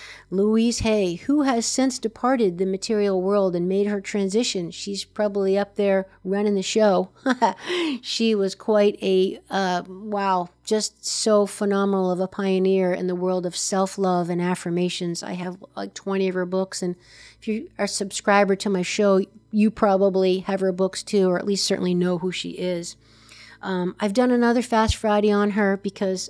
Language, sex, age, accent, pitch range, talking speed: English, female, 50-69, American, 190-225 Hz, 180 wpm